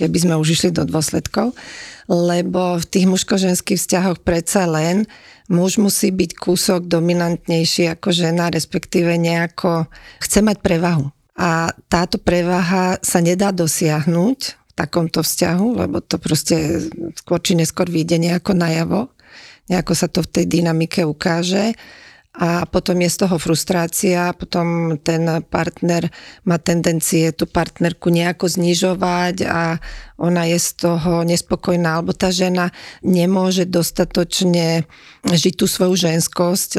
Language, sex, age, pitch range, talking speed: Slovak, female, 40-59, 165-185 Hz, 130 wpm